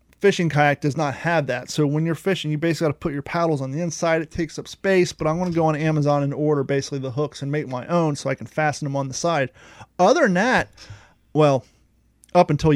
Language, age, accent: English, 30-49, American